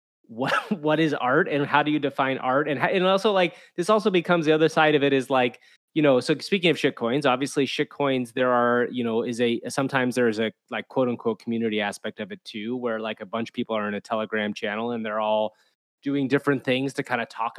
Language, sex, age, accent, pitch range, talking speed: English, male, 20-39, American, 120-160 Hz, 250 wpm